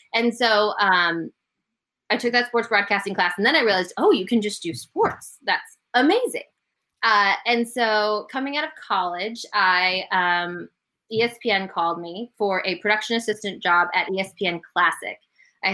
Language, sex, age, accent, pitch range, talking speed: English, female, 20-39, American, 190-240 Hz, 155 wpm